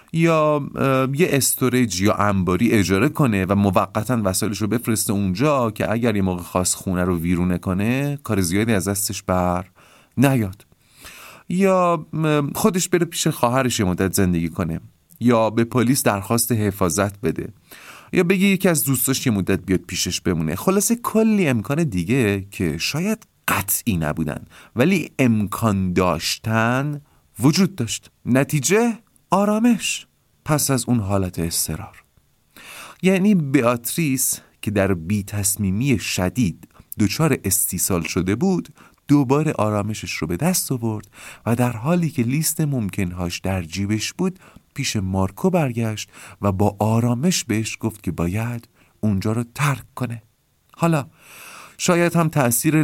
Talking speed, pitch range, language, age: 130 wpm, 95-145 Hz, Persian, 30-49